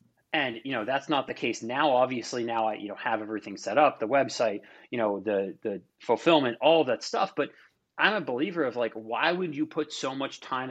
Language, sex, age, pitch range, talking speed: English, male, 30-49, 125-160 Hz, 225 wpm